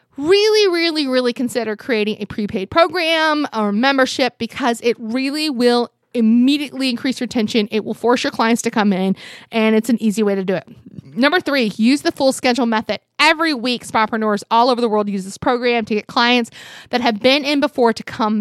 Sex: female